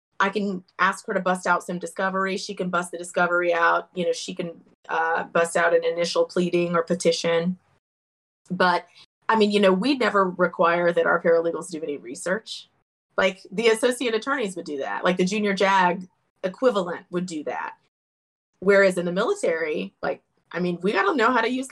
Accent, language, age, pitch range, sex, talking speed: American, English, 20-39, 170-195 Hz, female, 195 wpm